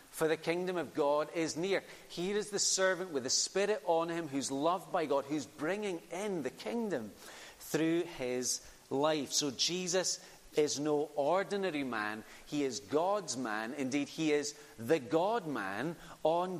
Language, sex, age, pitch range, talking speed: English, male, 40-59, 125-170 Hz, 165 wpm